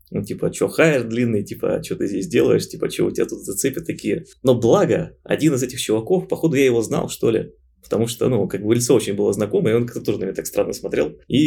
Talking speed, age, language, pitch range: 250 wpm, 20-39, Russian, 110-140 Hz